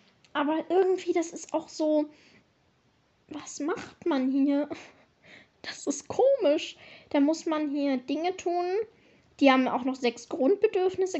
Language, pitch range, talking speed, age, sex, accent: German, 250-315 Hz, 135 wpm, 10-29, female, German